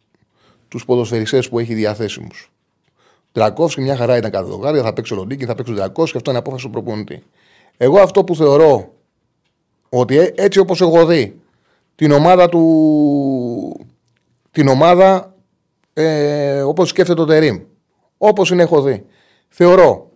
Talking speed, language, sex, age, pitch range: 145 wpm, Greek, male, 30-49, 130-170 Hz